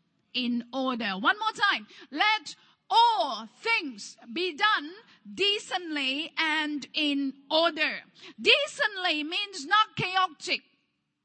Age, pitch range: 50-69, 225-330 Hz